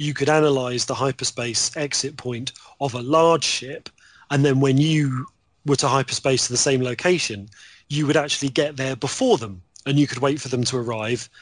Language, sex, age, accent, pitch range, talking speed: English, male, 30-49, British, 125-145 Hz, 195 wpm